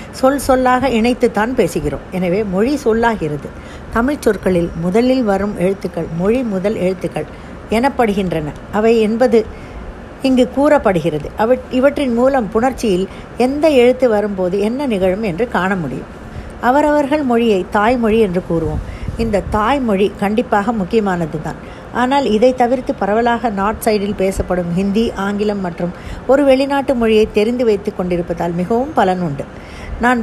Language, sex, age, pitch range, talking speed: Tamil, female, 50-69, 190-245 Hz, 120 wpm